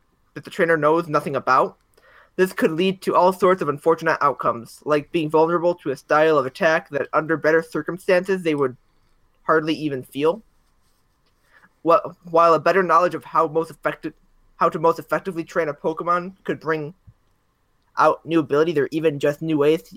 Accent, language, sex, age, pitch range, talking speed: American, English, male, 20-39, 150-170 Hz, 175 wpm